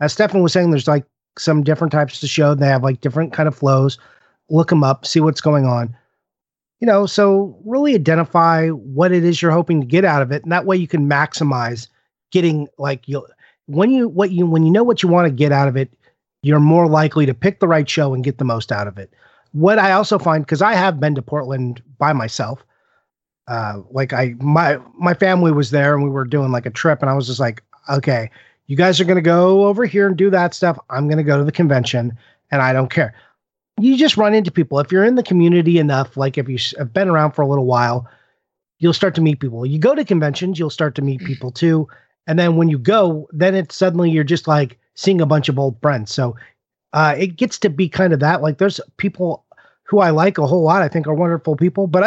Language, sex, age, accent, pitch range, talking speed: English, male, 30-49, American, 140-180 Hz, 245 wpm